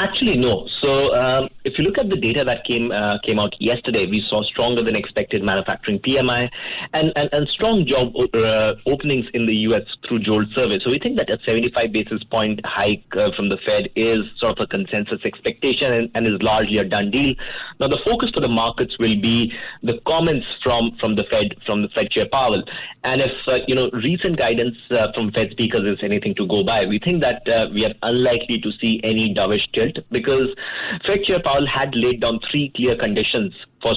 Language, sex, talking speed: English, male, 210 wpm